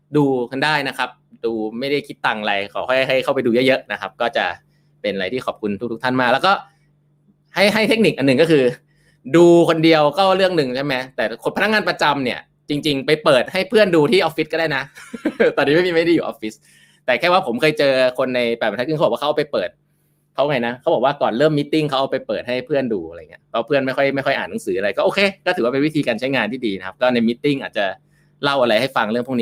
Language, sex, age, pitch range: Thai, male, 20-39, 125-155 Hz